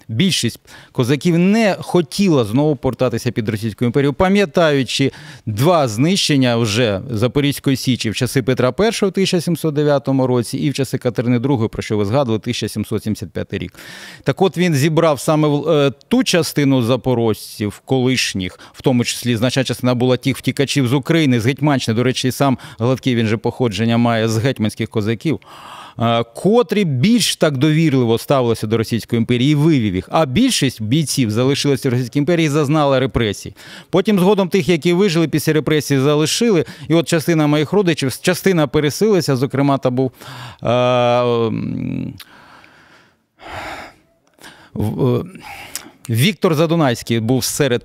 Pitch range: 125-170 Hz